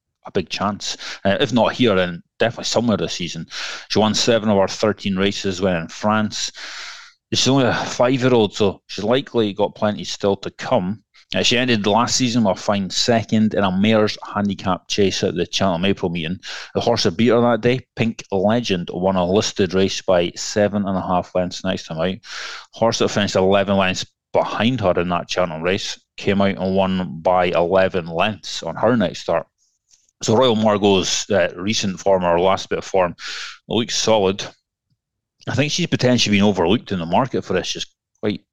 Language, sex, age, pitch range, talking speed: English, male, 30-49, 95-115 Hz, 190 wpm